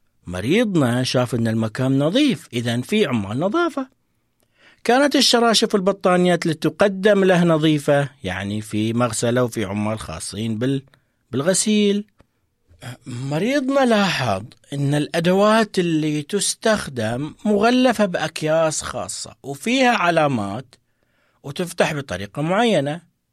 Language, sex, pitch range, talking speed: Arabic, male, 110-180 Hz, 95 wpm